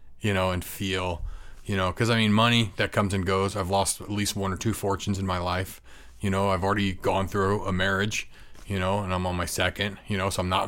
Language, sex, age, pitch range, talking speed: English, male, 30-49, 95-115 Hz, 255 wpm